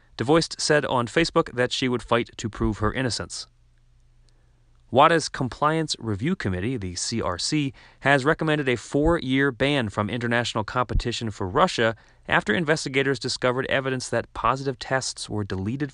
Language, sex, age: English, male, 30-49